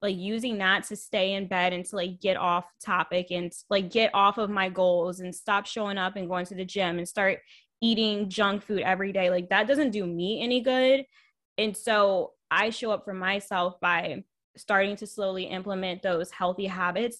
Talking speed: 200 wpm